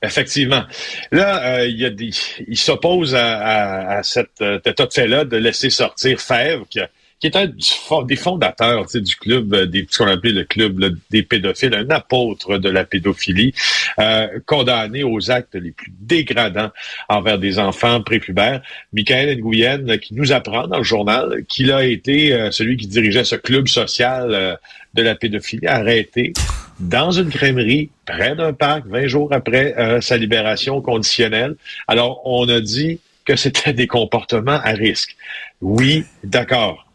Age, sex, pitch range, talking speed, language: 50-69, male, 105-135 Hz, 165 wpm, French